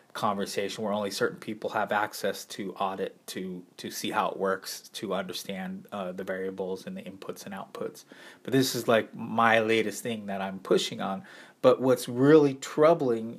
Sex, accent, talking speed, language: male, American, 180 wpm, English